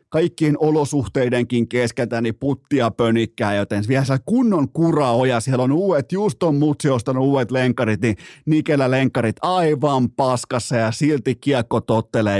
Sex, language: male, Finnish